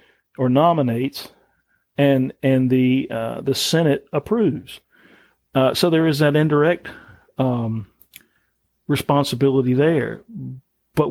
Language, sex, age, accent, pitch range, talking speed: English, male, 50-69, American, 125-150 Hz, 105 wpm